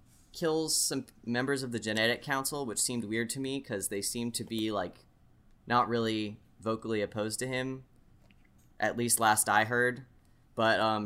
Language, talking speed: English, 170 wpm